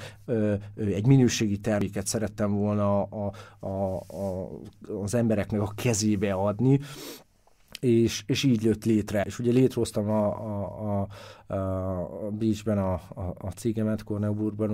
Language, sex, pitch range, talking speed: Hungarian, male, 100-110 Hz, 120 wpm